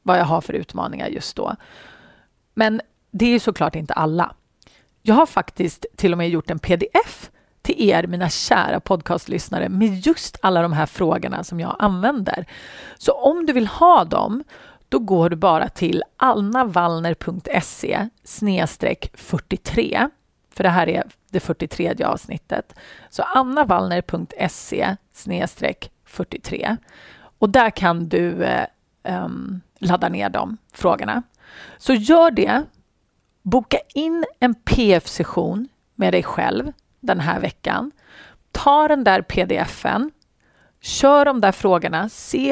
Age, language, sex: 30-49, Swedish, female